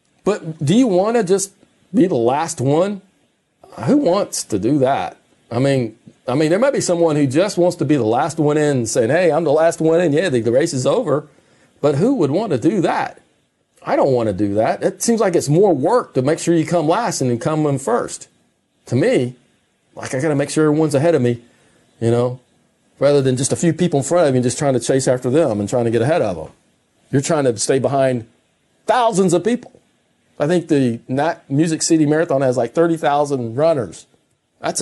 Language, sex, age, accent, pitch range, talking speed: English, male, 40-59, American, 135-190 Hz, 225 wpm